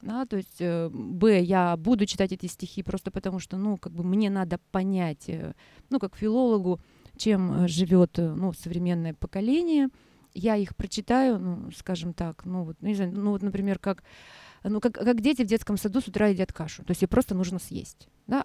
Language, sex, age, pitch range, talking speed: Russian, female, 30-49, 185-225 Hz, 190 wpm